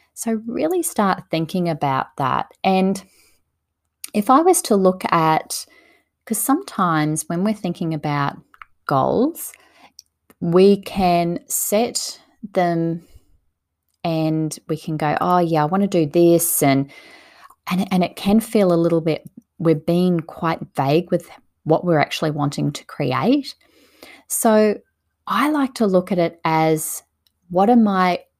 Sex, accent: female, Australian